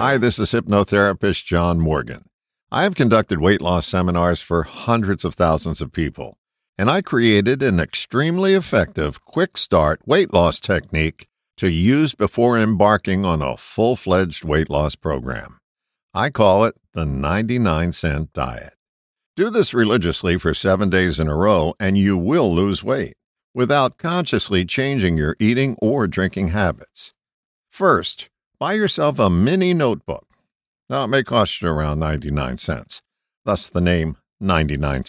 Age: 60-79